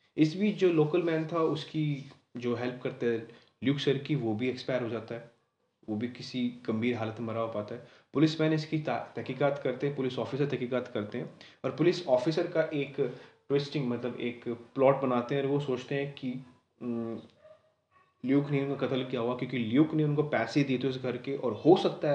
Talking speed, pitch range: 205 wpm, 125-155 Hz